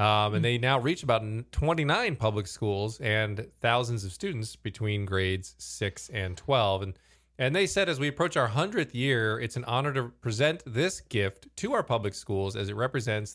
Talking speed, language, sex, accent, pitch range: 190 wpm, English, male, American, 100-135 Hz